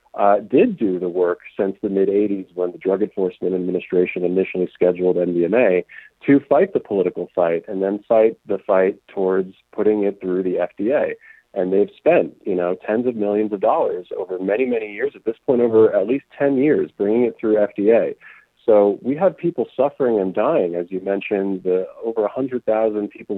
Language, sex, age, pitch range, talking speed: English, male, 40-59, 95-120 Hz, 185 wpm